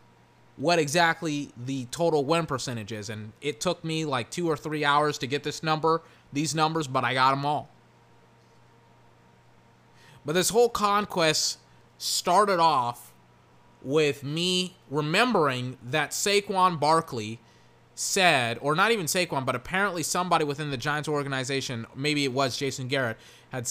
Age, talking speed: 20-39, 145 wpm